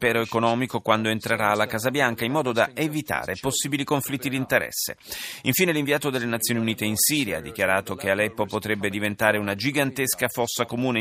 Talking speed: 175 wpm